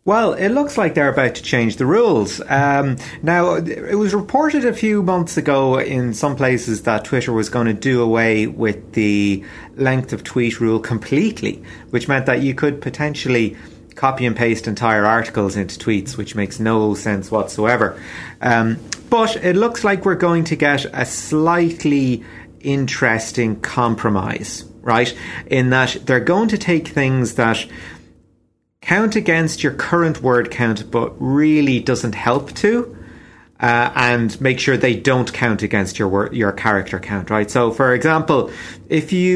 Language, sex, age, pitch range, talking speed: English, male, 30-49, 105-140 Hz, 160 wpm